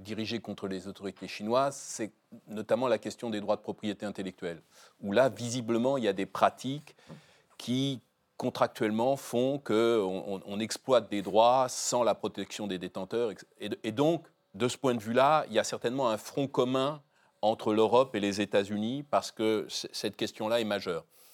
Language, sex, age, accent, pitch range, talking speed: French, male, 40-59, French, 105-150 Hz, 175 wpm